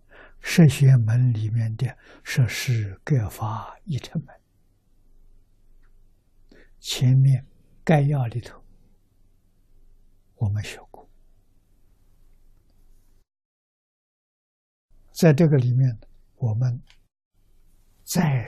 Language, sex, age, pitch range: Chinese, male, 60-79, 95-125 Hz